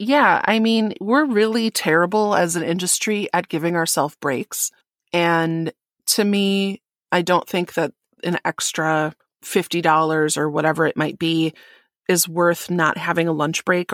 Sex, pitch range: female, 160-195 Hz